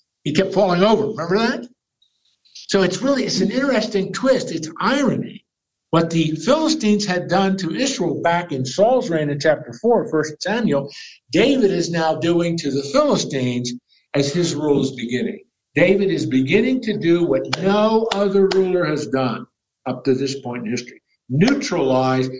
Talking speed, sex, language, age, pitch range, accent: 165 wpm, male, English, 60-79, 135-195 Hz, American